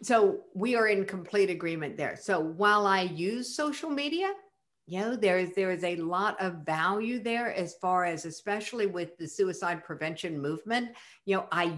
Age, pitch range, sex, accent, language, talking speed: 60-79, 175-230 Hz, female, American, English, 180 wpm